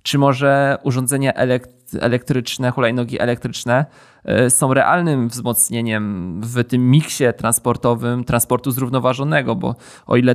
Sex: male